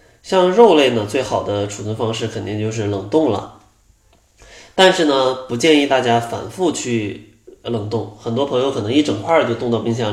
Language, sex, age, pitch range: Chinese, male, 20-39, 105-135 Hz